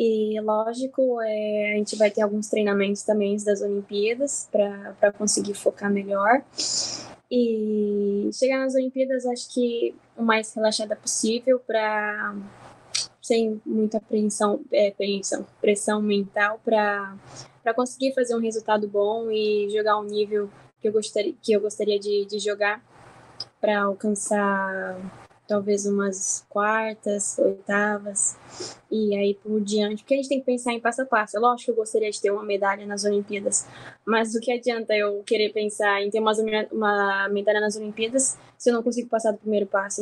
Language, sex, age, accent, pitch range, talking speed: Portuguese, female, 10-29, Brazilian, 205-225 Hz, 160 wpm